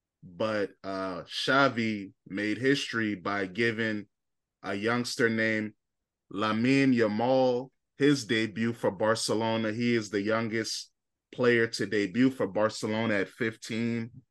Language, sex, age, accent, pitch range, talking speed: English, male, 20-39, American, 110-125 Hz, 115 wpm